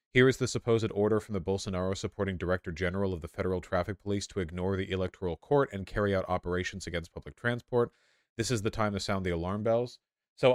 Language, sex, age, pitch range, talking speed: English, male, 30-49, 90-110 Hz, 215 wpm